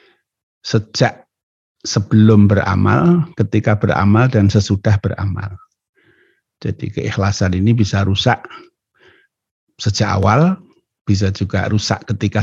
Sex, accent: male, native